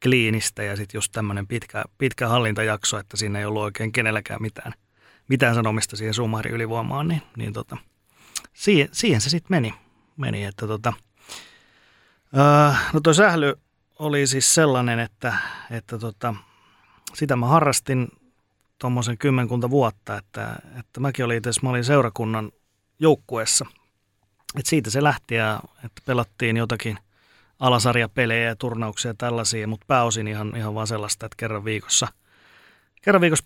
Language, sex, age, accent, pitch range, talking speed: Finnish, male, 30-49, native, 110-130 Hz, 140 wpm